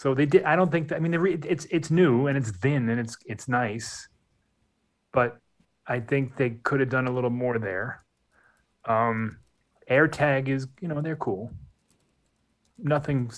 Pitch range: 120-150 Hz